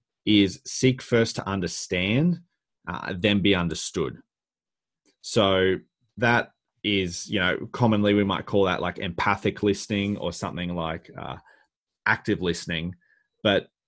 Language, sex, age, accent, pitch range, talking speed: English, male, 30-49, Australian, 95-115 Hz, 125 wpm